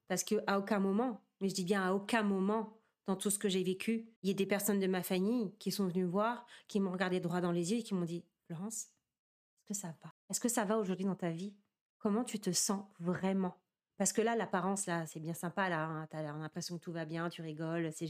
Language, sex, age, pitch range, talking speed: French, female, 30-49, 165-205 Hz, 265 wpm